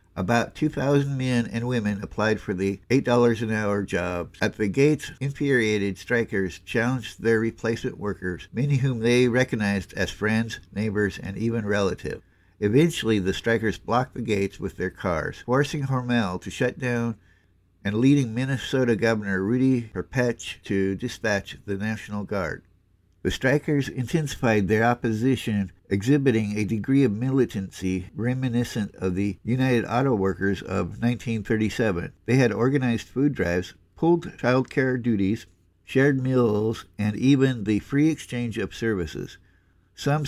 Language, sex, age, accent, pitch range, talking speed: English, male, 60-79, American, 100-130 Hz, 135 wpm